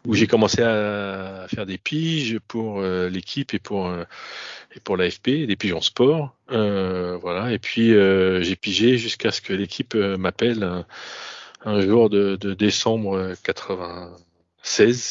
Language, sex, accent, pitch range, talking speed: French, male, French, 95-115 Hz, 160 wpm